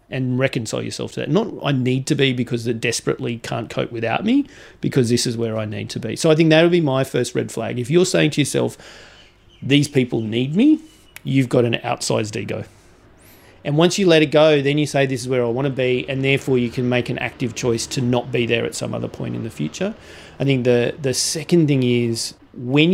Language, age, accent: English, 40-59, Australian